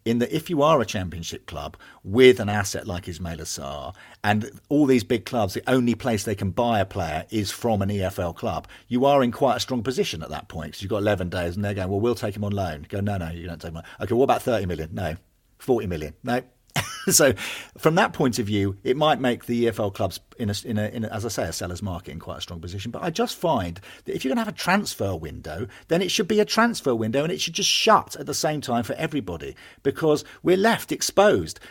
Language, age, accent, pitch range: English, 40-59, British, 90-125 Hz